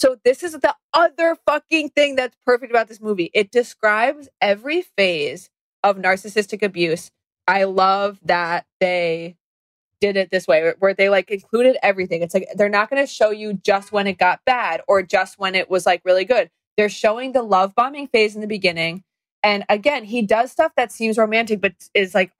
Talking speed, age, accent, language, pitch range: 195 wpm, 20-39, American, English, 185-225 Hz